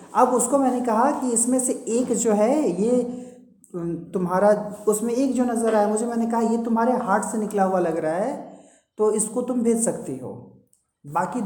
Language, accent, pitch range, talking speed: Hindi, native, 190-235 Hz, 190 wpm